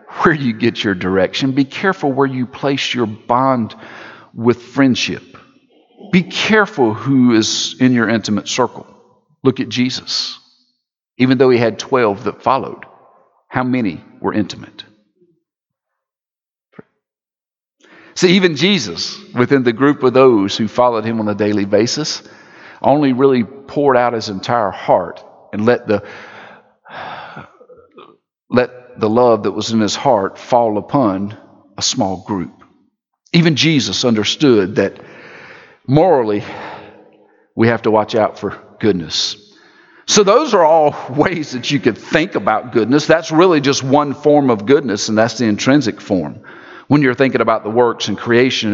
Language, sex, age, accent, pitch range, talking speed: English, male, 50-69, American, 110-140 Hz, 145 wpm